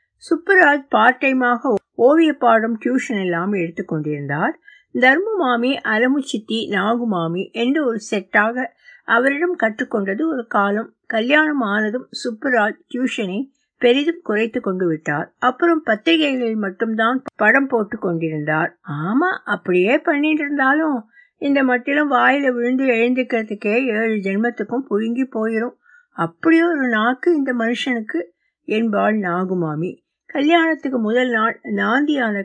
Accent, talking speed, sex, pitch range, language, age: native, 65 wpm, female, 200-280 Hz, Tamil, 60-79